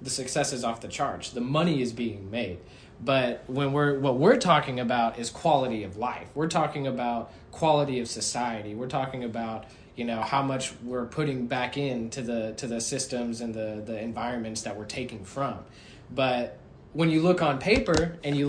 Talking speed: 195 wpm